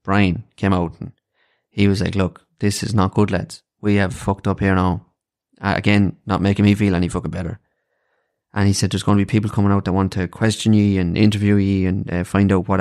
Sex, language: male, English